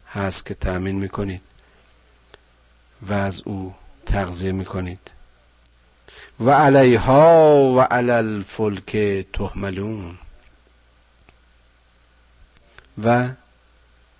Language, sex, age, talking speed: Persian, male, 50-69, 75 wpm